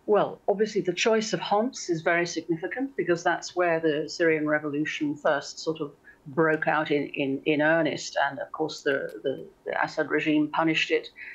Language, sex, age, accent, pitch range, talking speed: English, female, 50-69, British, 150-180 Hz, 180 wpm